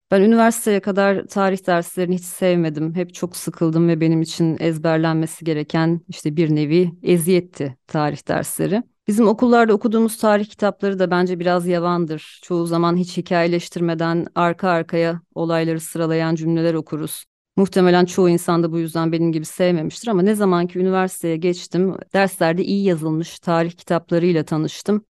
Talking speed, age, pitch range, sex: 145 wpm, 30-49, 170-195 Hz, female